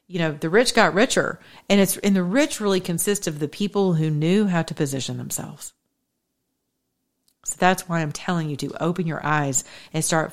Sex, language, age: female, English, 40-59